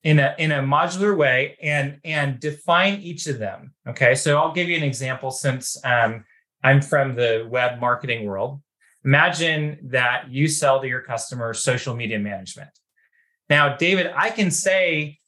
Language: English